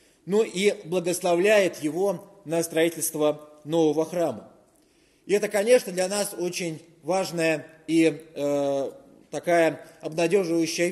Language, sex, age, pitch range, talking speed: Russian, male, 30-49, 160-190 Hz, 105 wpm